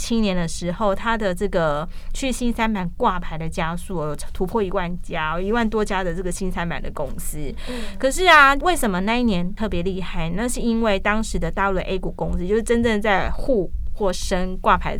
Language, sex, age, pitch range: Chinese, female, 20-39, 185-245 Hz